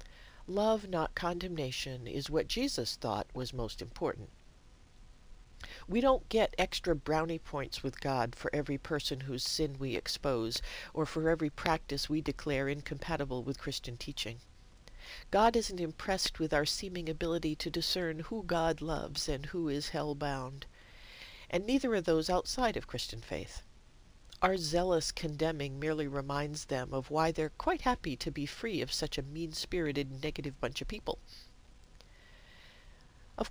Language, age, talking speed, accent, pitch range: English, 50-69, 145 wpm, American, 140-175 Hz